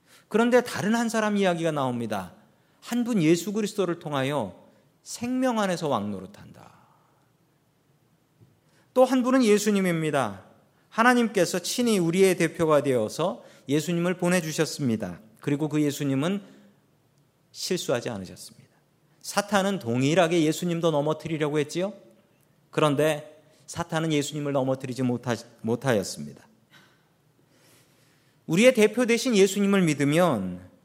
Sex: male